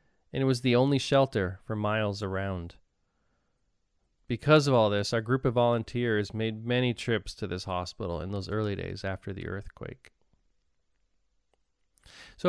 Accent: American